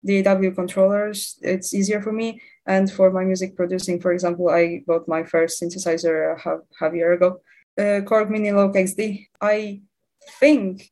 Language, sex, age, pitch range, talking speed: English, female, 20-39, 180-210 Hz, 170 wpm